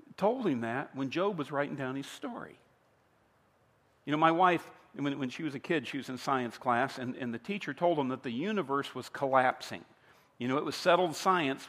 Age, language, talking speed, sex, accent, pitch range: 50-69, English, 210 wpm, male, American, 135-180 Hz